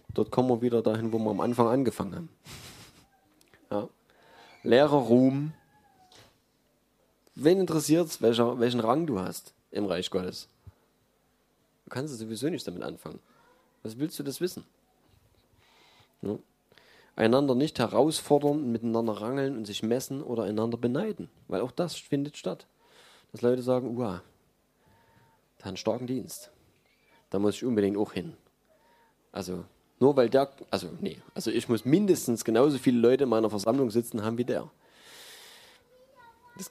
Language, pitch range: German, 115-155 Hz